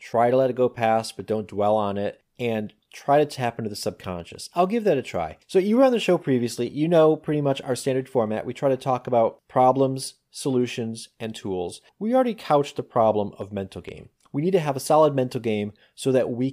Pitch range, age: 110-140 Hz, 30-49